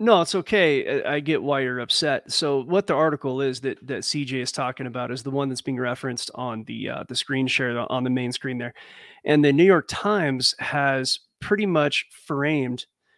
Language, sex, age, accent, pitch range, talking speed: English, male, 30-49, American, 130-160 Hz, 205 wpm